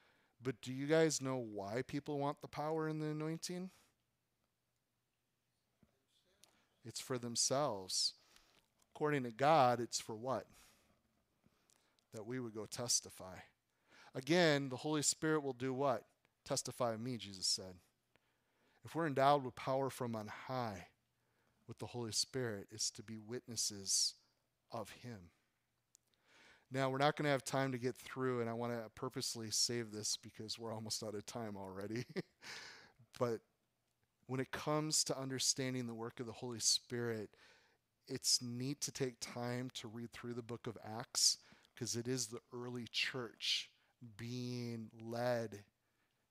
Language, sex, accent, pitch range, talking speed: English, male, American, 115-130 Hz, 145 wpm